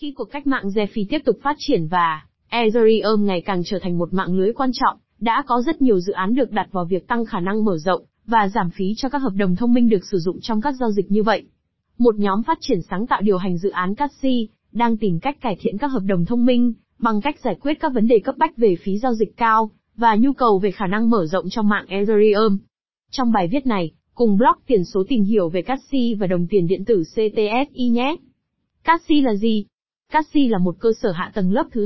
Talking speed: 245 wpm